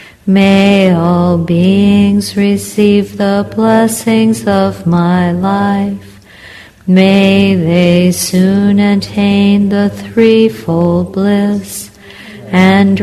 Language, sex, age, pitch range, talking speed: English, female, 40-59, 175-200 Hz, 80 wpm